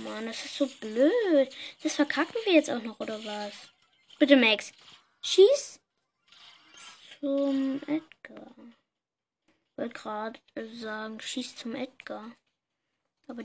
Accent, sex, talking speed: German, female, 115 wpm